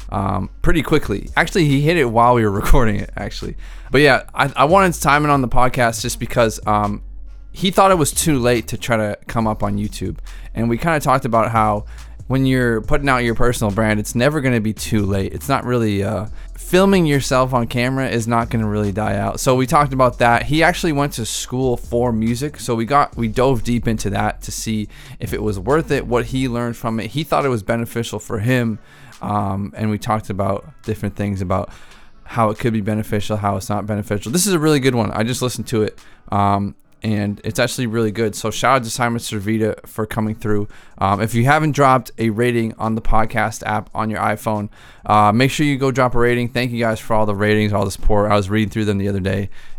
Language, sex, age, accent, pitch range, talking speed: English, male, 20-39, American, 105-130 Hz, 235 wpm